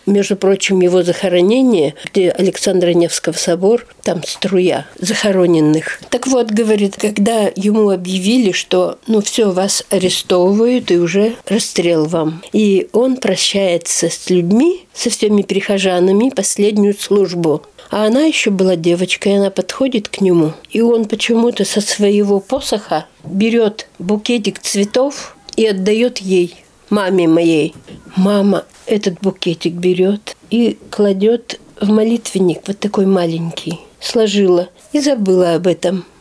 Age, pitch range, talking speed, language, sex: 50-69, 180-230 Hz, 125 wpm, Russian, female